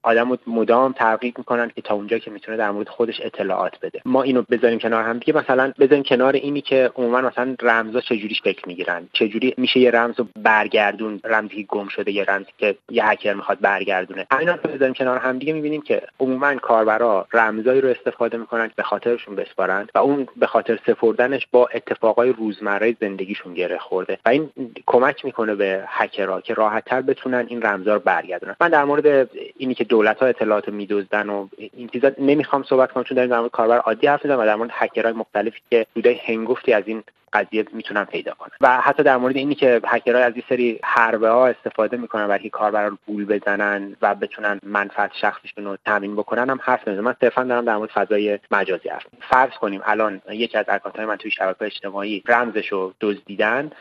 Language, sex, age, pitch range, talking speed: Persian, male, 30-49, 105-130 Hz, 195 wpm